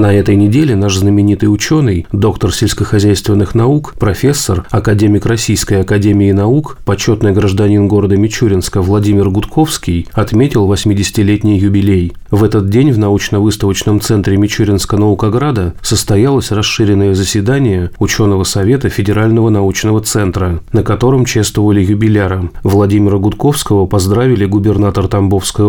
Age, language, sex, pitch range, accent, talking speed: 30-49, Russian, male, 100-110 Hz, native, 110 wpm